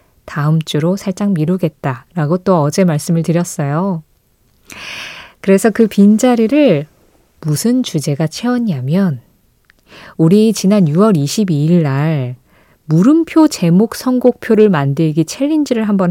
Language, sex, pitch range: Korean, female, 160-230 Hz